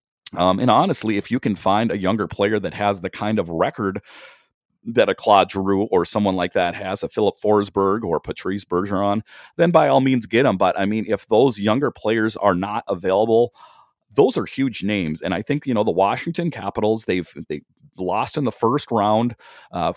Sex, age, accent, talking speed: male, 40-59, American, 200 wpm